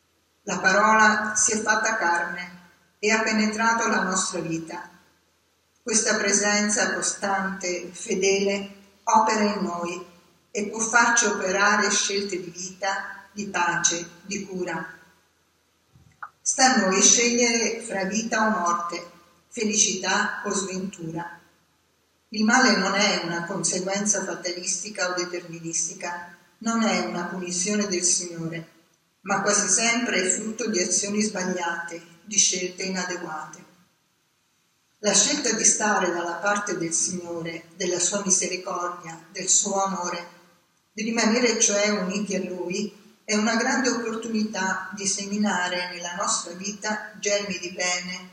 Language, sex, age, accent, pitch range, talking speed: Italian, female, 50-69, native, 175-210 Hz, 125 wpm